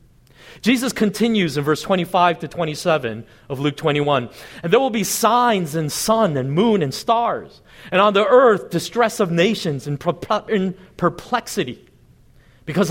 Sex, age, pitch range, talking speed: male, 40-59, 135-195 Hz, 145 wpm